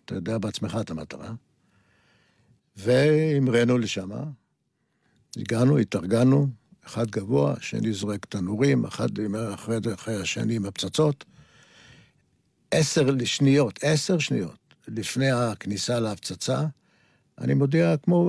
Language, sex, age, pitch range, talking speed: Hebrew, male, 60-79, 110-135 Hz, 95 wpm